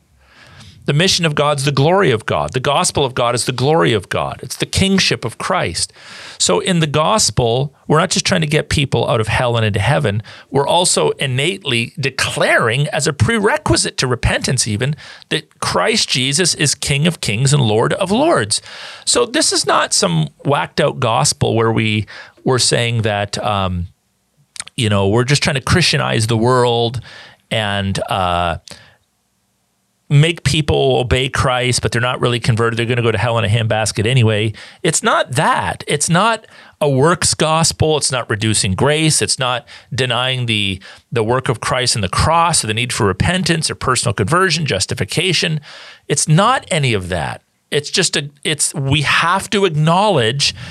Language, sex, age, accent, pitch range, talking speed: English, male, 40-59, American, 115-155 Hz, 175 wpm